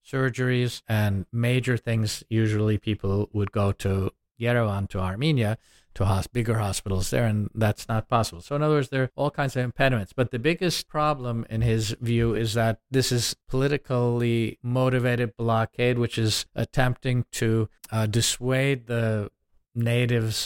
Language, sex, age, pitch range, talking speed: English, male, 50-69, 110-125 Hz, 155 wpm